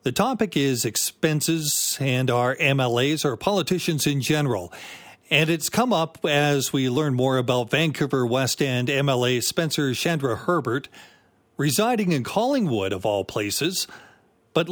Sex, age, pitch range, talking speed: male, 40-59, 125-160 Hz, 140 wpm